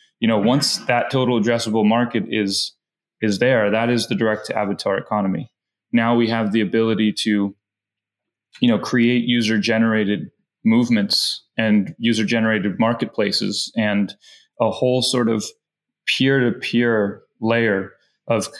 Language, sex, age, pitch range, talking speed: English, male, 20-39, 105-120 Hz, 120 wpm